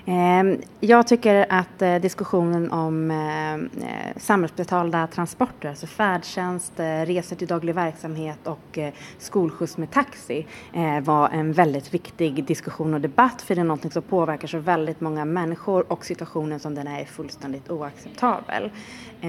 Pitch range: 160-200 Hz